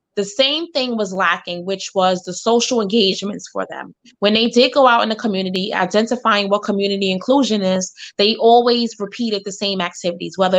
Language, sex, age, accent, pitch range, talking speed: English, female, 20-39, American, 195-240 Hz, 180 wpm